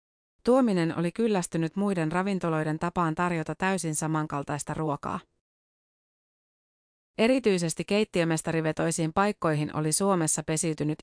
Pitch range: 155-190 Hz